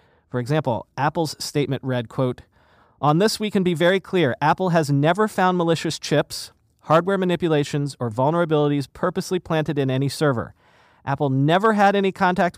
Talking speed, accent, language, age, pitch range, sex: 155 wpm, American, English, 40-59, 120-160 Hz, male